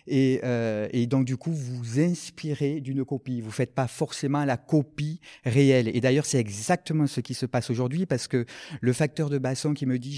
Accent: French